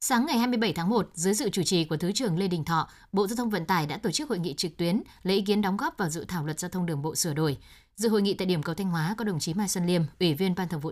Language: Vietnamese